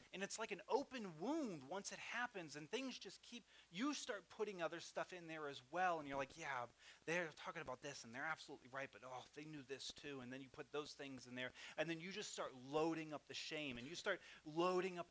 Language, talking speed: English, 245 wpm